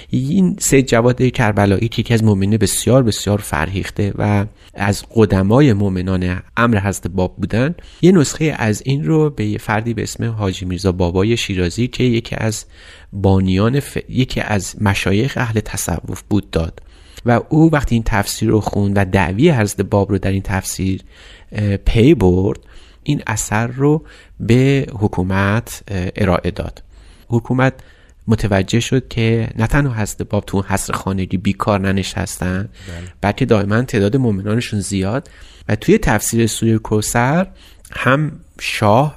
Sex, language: male, Persian